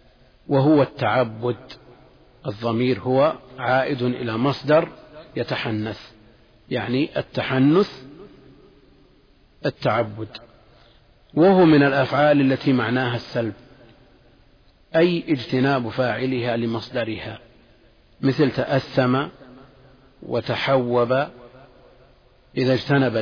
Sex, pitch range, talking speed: male, 115-135 Hz, 65 wpm